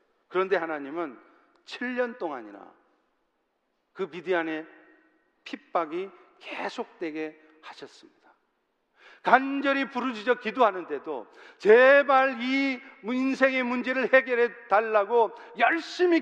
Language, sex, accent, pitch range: Korean, male, native, 180-255 Hz